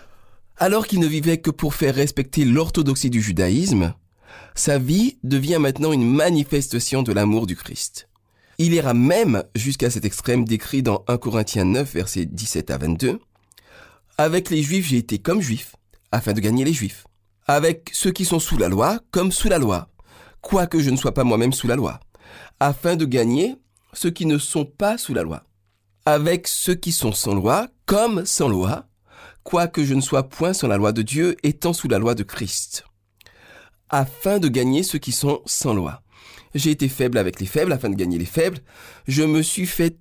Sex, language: male, French